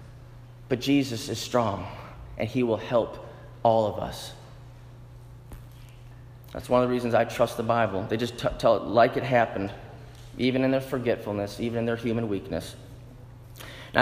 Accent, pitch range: American, 120-165 Hz